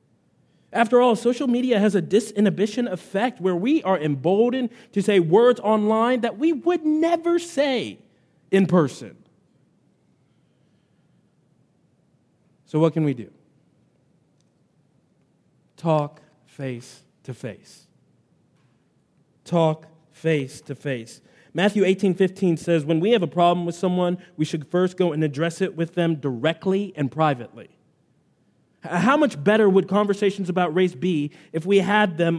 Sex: male